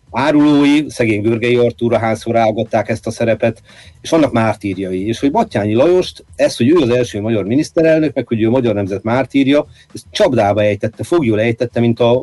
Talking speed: 175 wpm